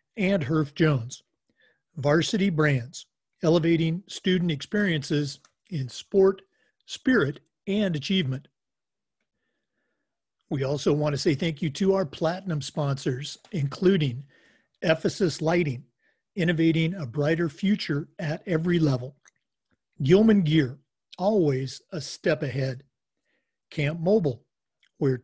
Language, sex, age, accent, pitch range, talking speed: English, male, 50-69, American, 145-190 Hz, 100 wpm